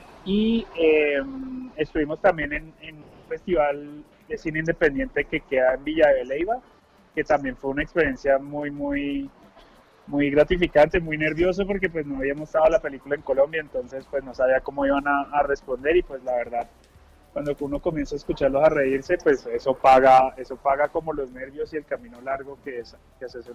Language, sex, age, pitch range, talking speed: Spanish, male, 20-39, 135-170 Hz, 185 wpm